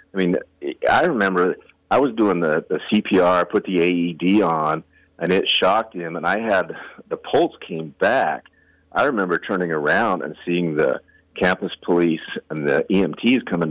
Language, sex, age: English, male, 40-59